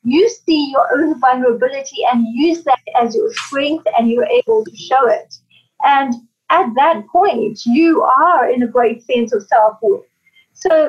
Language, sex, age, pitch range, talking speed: English, female, 30-49, 245-330 Hz, 165 wpm